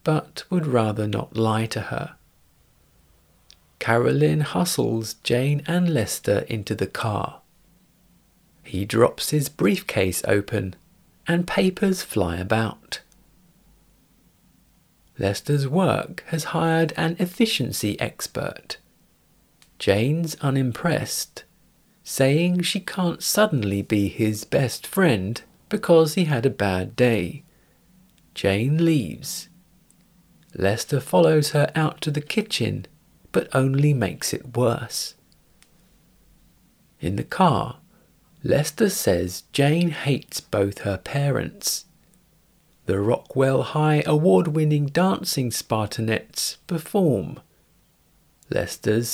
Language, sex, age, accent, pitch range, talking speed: English, male, 40-59, British, 110-165 Hz, 95 wpm